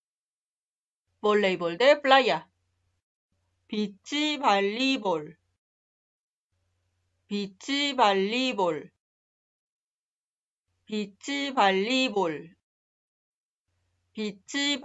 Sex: female